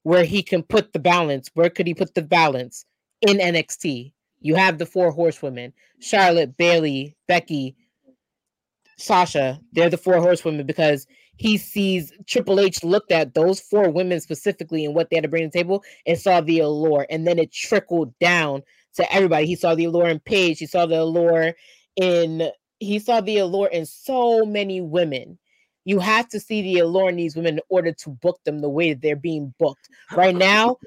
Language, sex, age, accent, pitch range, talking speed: English, female, 20-39, American, 165-210 Hz, 190 wpm